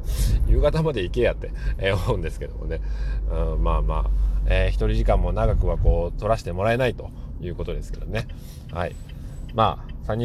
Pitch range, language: 80-110 Hz, Japanese